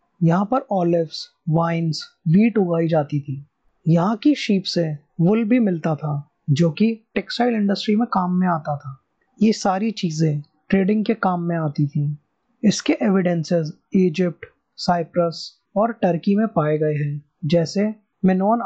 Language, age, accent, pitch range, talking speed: Hindi, 20-39, native, 160-210 Hz, 150 wpm